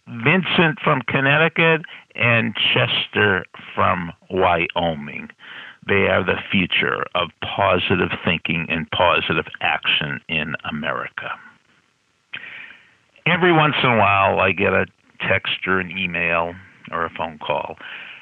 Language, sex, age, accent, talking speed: English, male, 50-69, American, 115 wpm